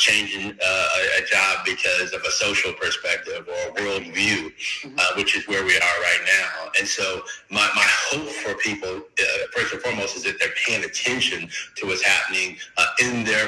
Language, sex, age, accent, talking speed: English, male, 30-49, American, 190 wpm